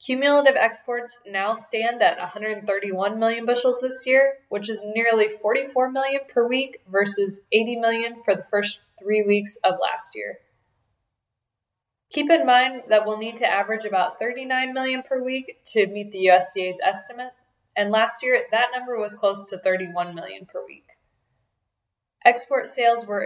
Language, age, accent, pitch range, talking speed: English, 10-29, American, 200-245 Hz, 155 wpm